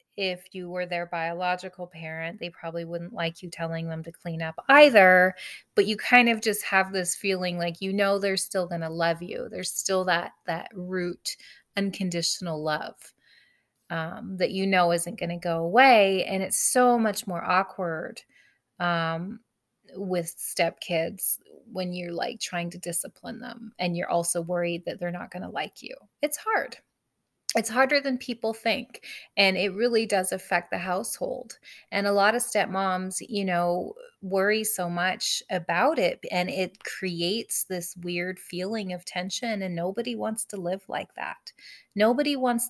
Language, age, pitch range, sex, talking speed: English, 30-49, 175-215 Hz, female, 170 wpm